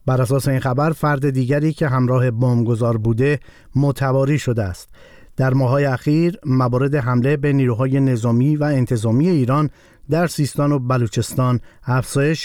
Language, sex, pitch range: Persian, male, 125-150 Hz